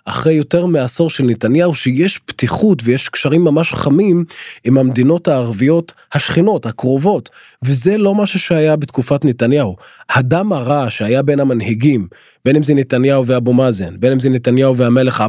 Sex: male